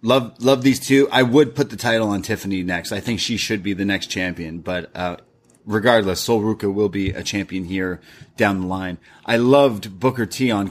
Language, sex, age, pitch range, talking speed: English, male, 30-49, 100-130 Hz, 215 wpm